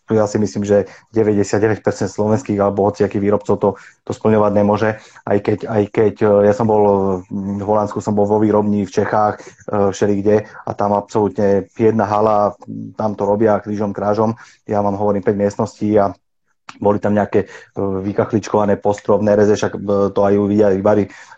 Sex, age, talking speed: male, 30-49, 155 wpm